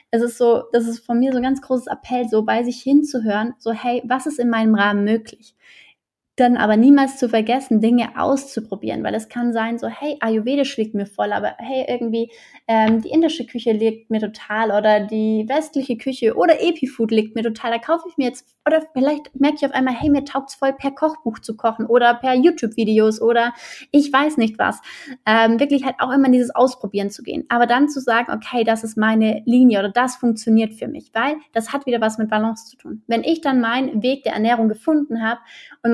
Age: 20-39